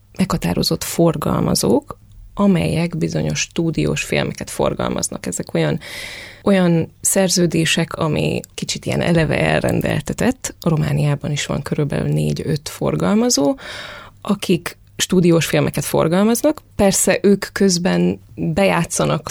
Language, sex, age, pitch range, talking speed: Hungarian, female, 20-39, 155-200 Hz, 95 wpm